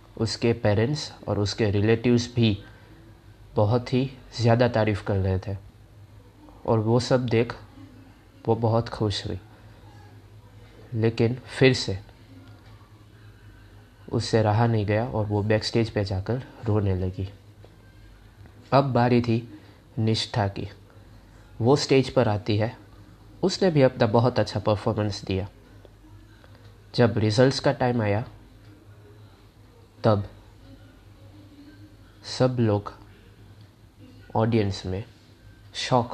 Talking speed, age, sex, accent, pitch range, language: 105 wpm, 20-39, male, Indian, 105-115 Hz, English